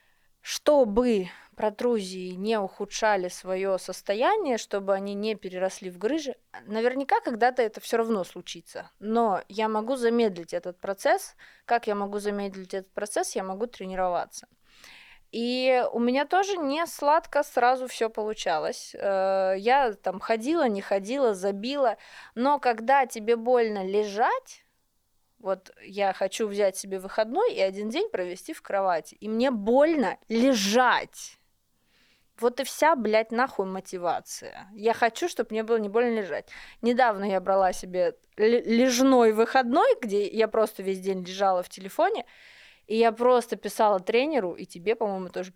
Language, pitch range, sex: Russian, 195-255 Hz, female